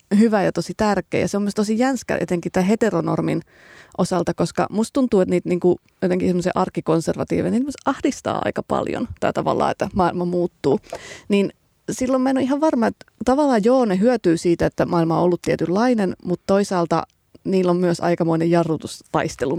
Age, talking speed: 30-49, 165 wpm